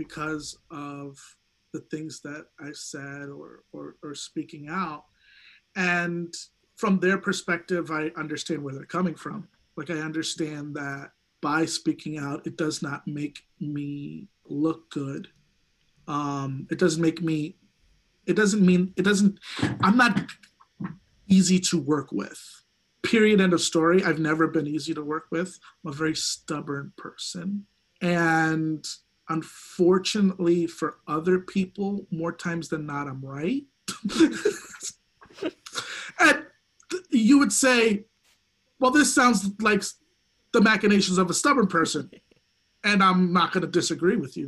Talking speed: 140 wpm